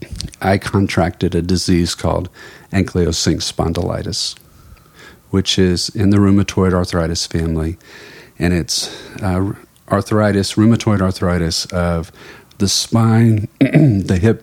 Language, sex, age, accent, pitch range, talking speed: English, male, 50-69, American, 85-105 Hz, 105 wpm